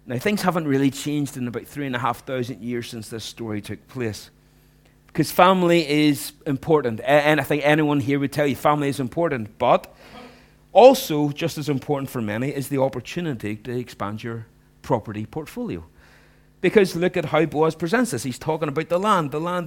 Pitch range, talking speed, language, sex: 125-170 Hz, 190 wpm, English, male